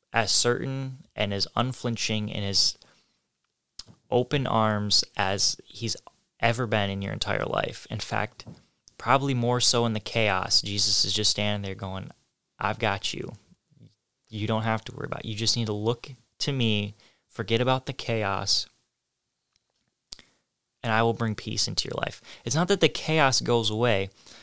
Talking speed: 165 wpm